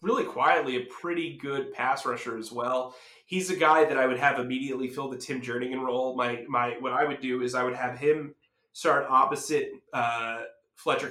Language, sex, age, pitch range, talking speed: English, male, 20-39, 120-135 Hz, 200 wpm